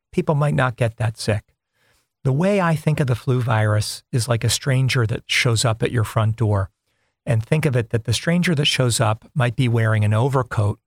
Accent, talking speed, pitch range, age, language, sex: American, 220 wpm, 110-145 Hz, 50-69, English, male